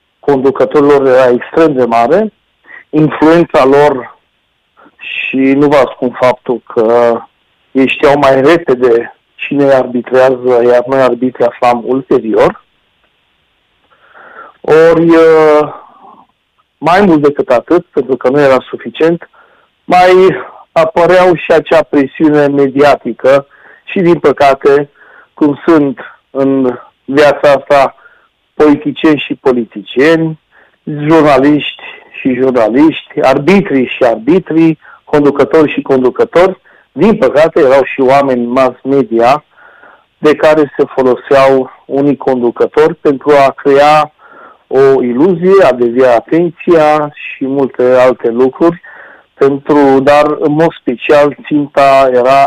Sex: male